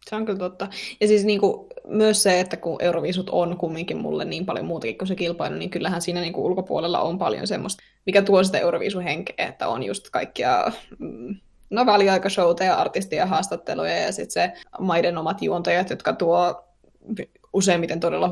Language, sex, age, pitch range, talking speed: Finnish, female, 20-39, 180-210 Hz, 180 wpm